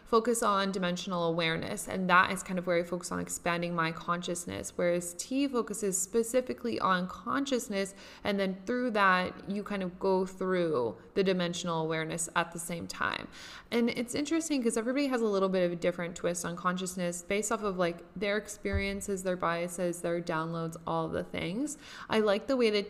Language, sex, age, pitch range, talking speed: English, female, 20-39, 175-215 Hz, 190 wpm